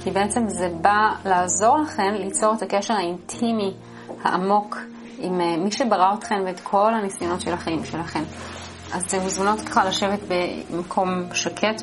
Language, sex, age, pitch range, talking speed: English, female, 30-49, 175-215 Hz, 130 wpm